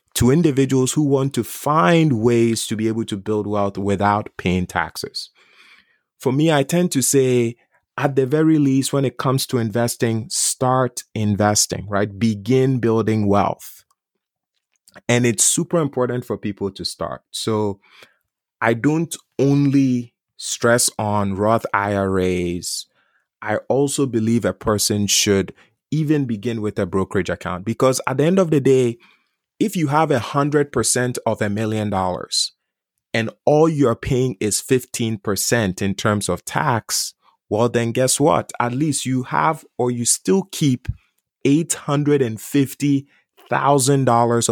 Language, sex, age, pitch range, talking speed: English, male, 30-49, 105-140 Hz, 140 wpm